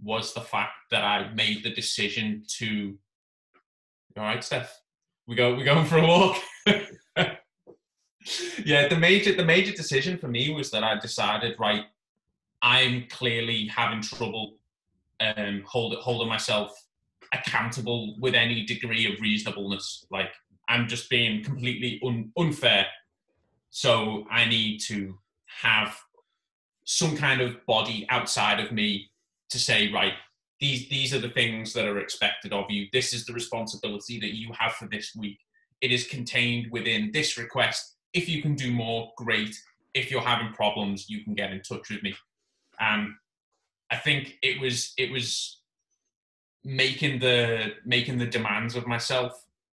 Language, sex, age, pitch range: English, male, 20-39, 105-130 Hz